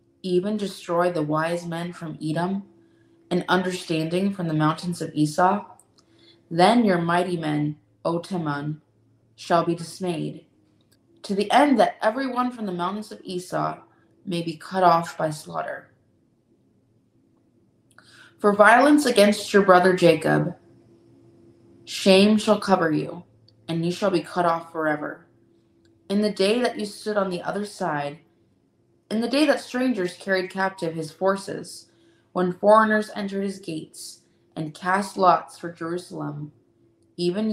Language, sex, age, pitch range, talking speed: English, female, 20-39, 160-195 Hz, 135 wpm